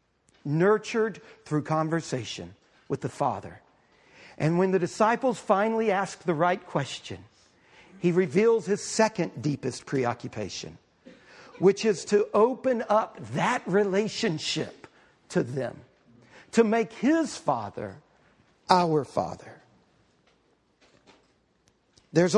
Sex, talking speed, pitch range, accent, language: male, 100 wpm, 150-220 Hz, American, English